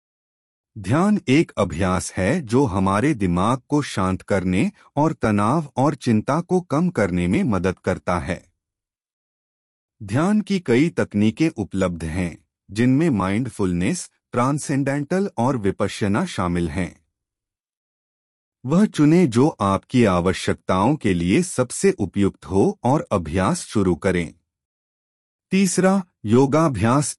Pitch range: 95-140 Hz